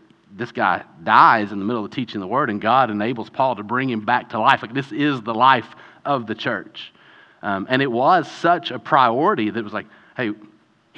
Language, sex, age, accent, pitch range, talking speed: English, male, 40-59, American, 115-150 Hz, 220 wpm